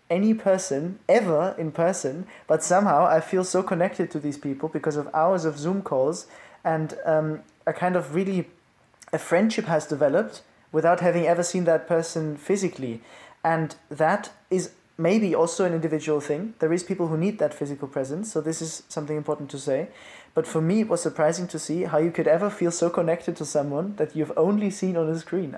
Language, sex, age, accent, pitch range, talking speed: English, male, 20-39, German, 155-180 Hz, 195 wpm